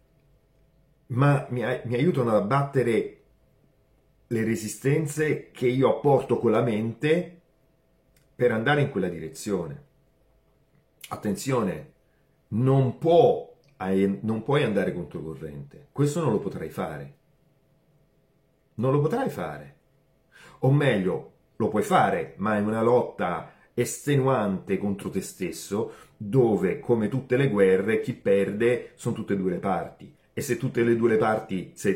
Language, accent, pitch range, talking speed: Italian, native, 95-135 Hz, 135 wpm